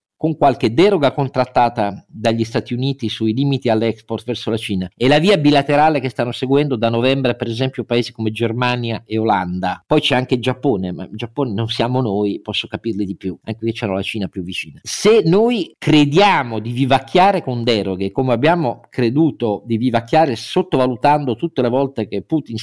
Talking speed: 185 wpm